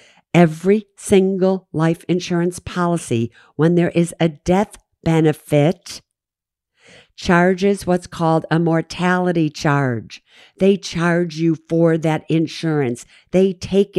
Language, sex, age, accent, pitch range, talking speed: English, female, 50-69, American, 145-180 Hz, 105 wpm